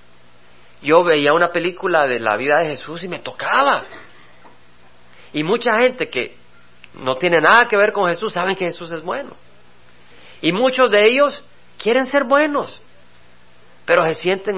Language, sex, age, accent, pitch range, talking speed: Spanish, male, 50-69, Mexican, 125-195 Hz, 155 wpm